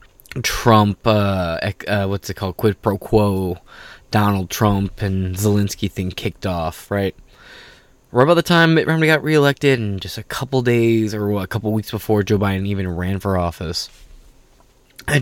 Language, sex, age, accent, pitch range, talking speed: English, male, 20-39, American, 95-125 Hz, 160 wpm